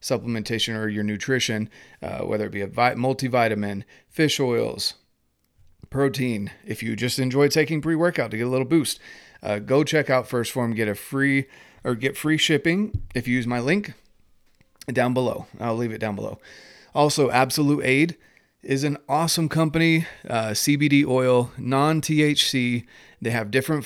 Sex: male